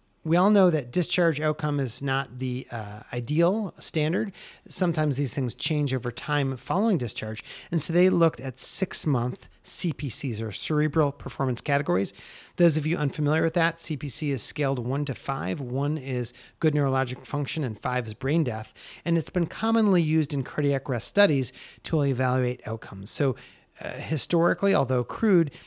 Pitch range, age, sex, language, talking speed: 130-170 Hz, 30-49, male, English, 165 wpm